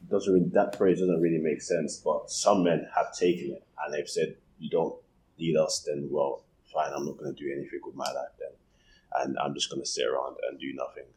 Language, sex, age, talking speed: English, male, 20-39, 235 wpm